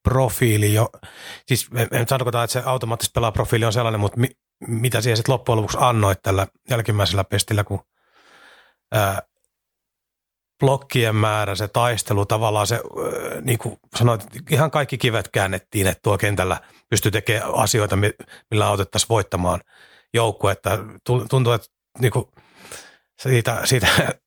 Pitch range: 105-120 Hz